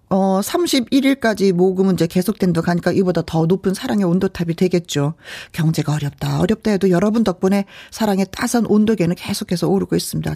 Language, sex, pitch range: Korean, female, 170-225 Hz